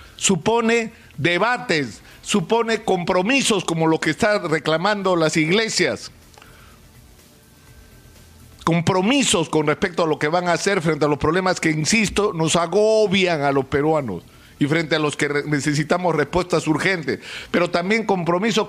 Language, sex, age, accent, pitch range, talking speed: Spanish, male, 50-69, Mexican, 160-225 Hz, 135 wpm